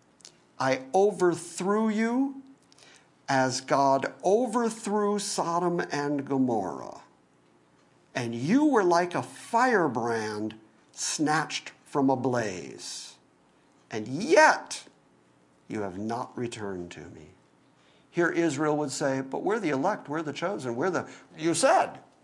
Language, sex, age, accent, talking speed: English, male, 50-69, American, 115 wpm